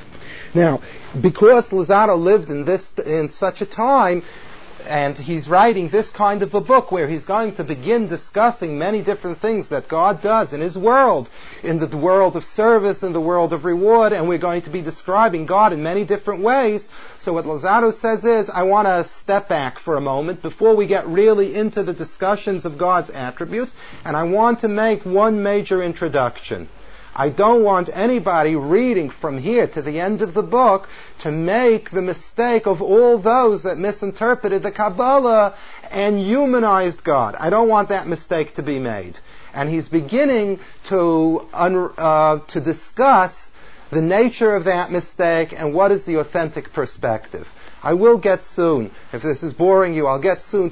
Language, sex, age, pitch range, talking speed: English, male, 40-59, 160-210 Hz, 175 wpm